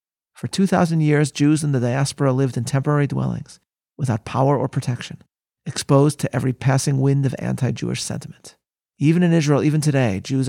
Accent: American